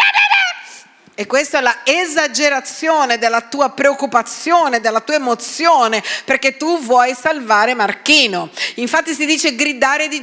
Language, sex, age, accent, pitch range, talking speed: Italian, female, 40-59, native, 235-305 Hz, 125 wpm